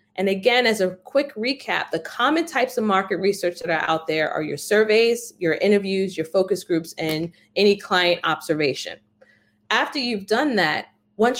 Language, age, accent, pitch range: English, 20-39, American, 180-240 Hz